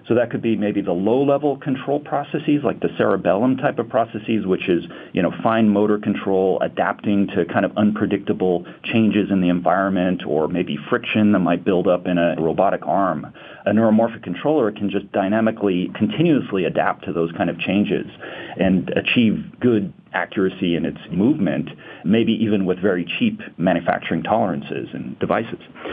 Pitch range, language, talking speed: 95-115 Hz, English, 165 wpm